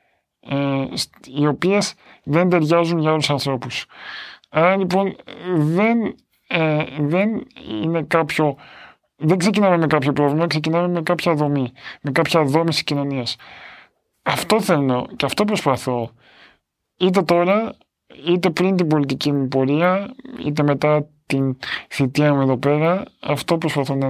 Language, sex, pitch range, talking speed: Greek, male, 145-185 Hz, 125 wpm